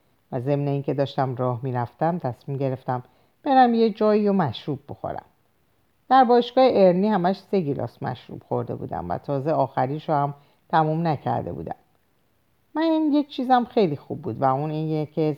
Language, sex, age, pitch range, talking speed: Persian, female, 50-69, 135-200 Hz, 160 wpm